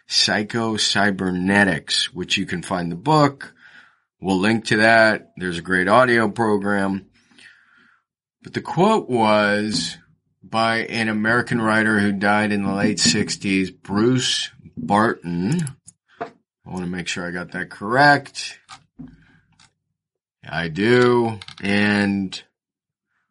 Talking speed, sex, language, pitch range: 115 wpm, male, English, 95-115 Hz